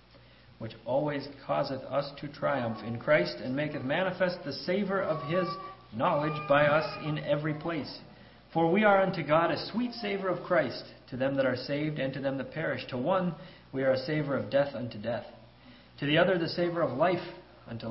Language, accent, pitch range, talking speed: English, American, 115-165 Hz, 200 wpm